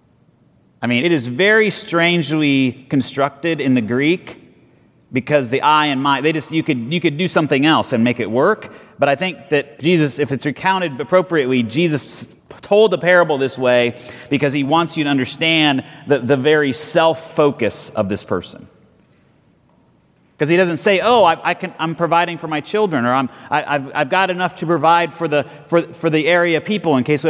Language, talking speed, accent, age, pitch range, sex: English, 190 wpm, American, 30-49, 140-180 Hz, male